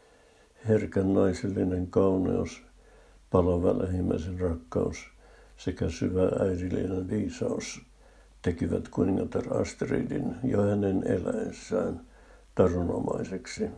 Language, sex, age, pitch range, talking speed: Finnish, male, 60-79, 90-110 Hz, 70 wpm